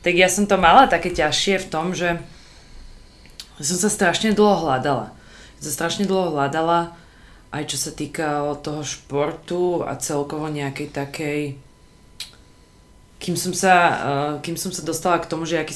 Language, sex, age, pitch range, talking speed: Slovak, female, 20-39, 145-175 Hz, 155 wpm